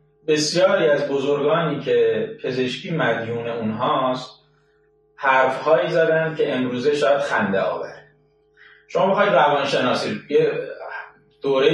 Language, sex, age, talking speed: Persian, male, 30-49, 100 wpm